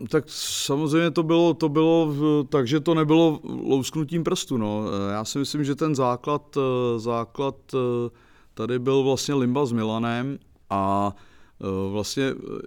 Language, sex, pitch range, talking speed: English, male, 100-120 Hz, 130 wpm